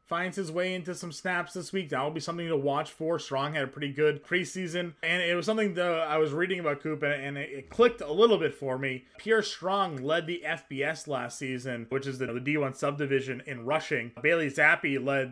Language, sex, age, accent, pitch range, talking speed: English, male, 20-39, American, 130-170 Hz, 220 wpm